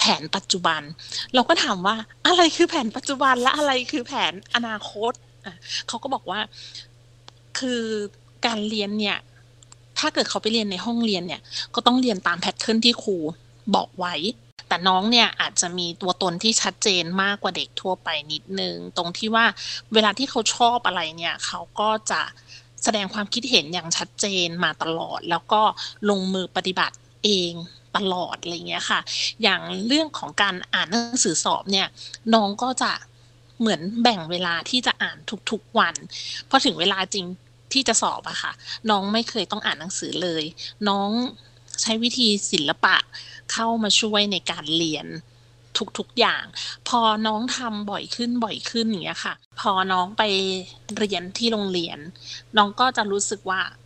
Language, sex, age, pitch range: Thai, female, 30-49, 170-225 Hz